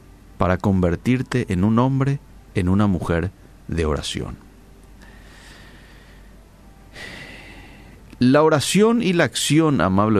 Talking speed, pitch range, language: 95 wpm, 95-130 Hz, Spanish